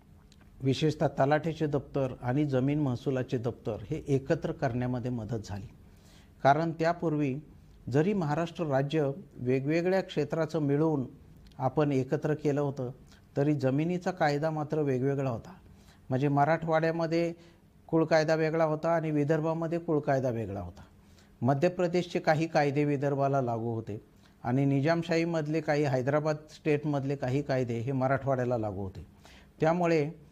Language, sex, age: Marathi, male, 60-79